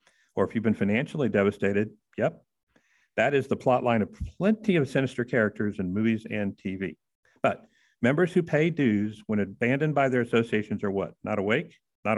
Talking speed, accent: 175 wpm, American